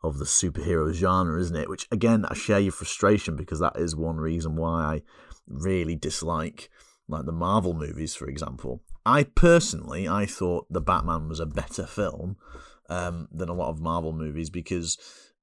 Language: English